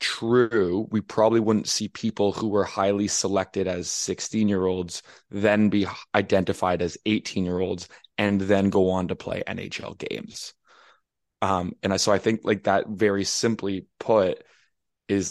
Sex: male